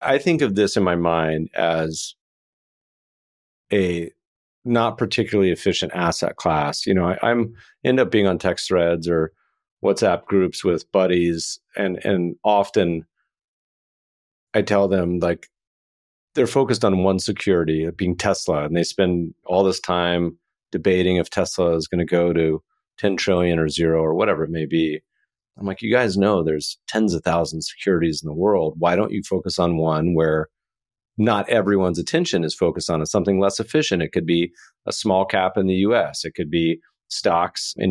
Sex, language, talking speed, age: male, English, 175 wpm, 40-59